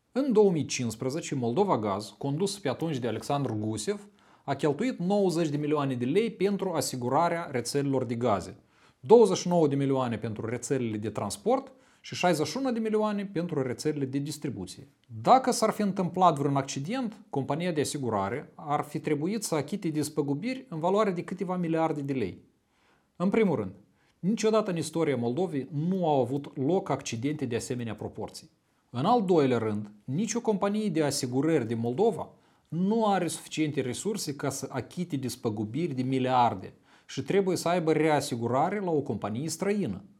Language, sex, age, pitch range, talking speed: Romanian, male, 40-59, 130-195 Hz, 155 wpm